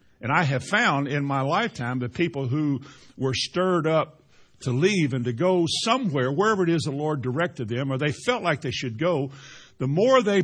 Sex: male